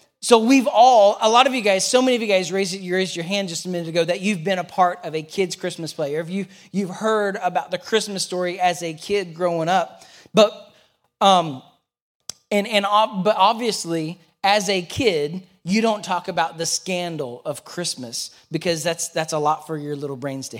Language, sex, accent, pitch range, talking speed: English, male, American, 165-205 Hz, 215 wpm